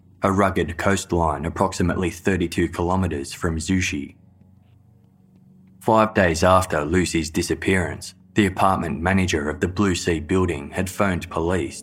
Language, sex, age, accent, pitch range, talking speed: English, male, 20-39, Australian, 85-95 Hz, 120 wpm